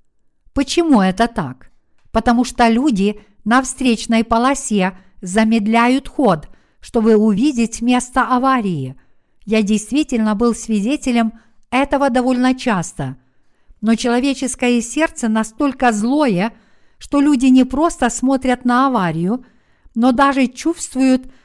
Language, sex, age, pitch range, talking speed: Russian, female, 50-69, 215-260 Hz, 105 wpm